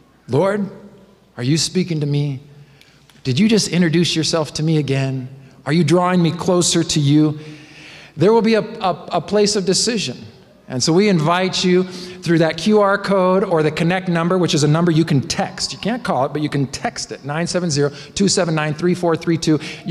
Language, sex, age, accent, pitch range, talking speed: English, male, 50-69, American, 140-185 Hz, 180 wpm